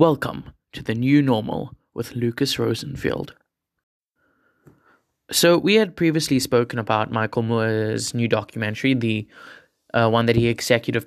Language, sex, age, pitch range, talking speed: English, male, 20-39, 115-130 Hz, 130 wpm